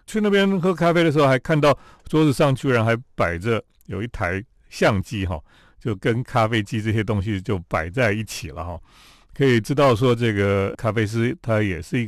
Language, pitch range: Chinese, 100-140 Hz